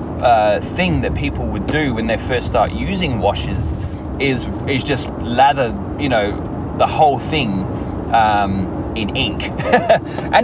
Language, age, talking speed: English, 30-49, 145 wpm